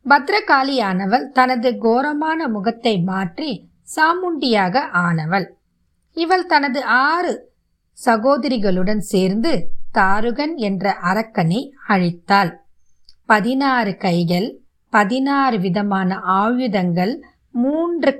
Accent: native